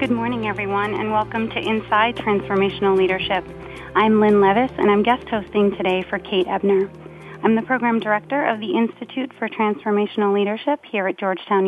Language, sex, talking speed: English, female, 170 wpm